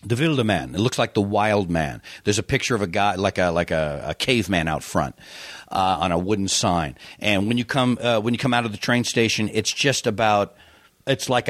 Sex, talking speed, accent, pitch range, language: male, 240 wpm, American, 95-125 Hz, English